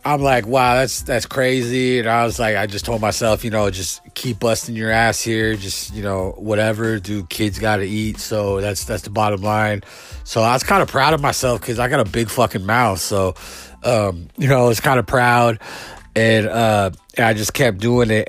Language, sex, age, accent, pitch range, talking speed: English, male, 30-49, American, 95-115 Hz, 225 wpm